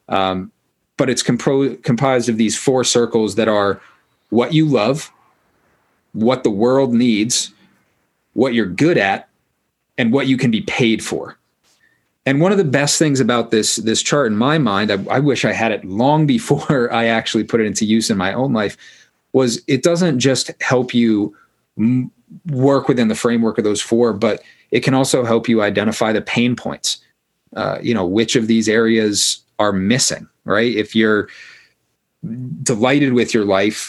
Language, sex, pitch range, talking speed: English, male, 105-130 Hz, 170 wpm